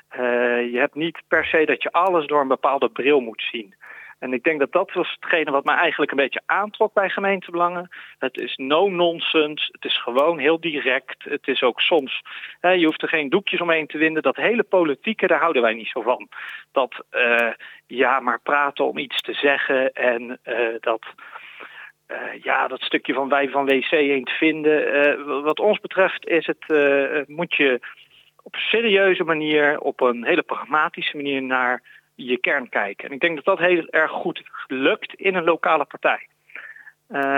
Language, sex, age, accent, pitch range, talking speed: Dutch, male, 40-59, Dutch, 140-180 Hz, 195 wpm